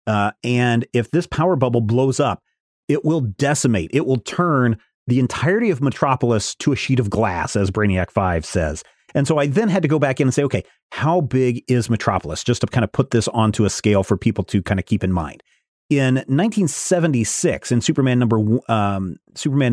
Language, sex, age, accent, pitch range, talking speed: English, male, 30-49, American, 110-140 Hz, 205 wpm